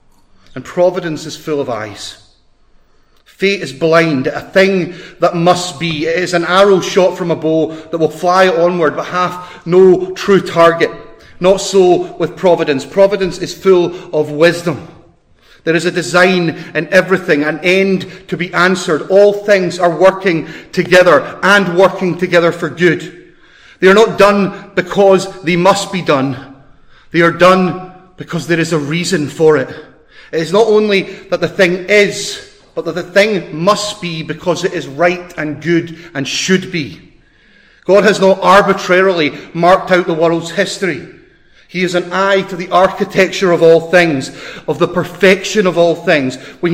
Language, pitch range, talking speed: English, 160-185 Hz, 165 wpm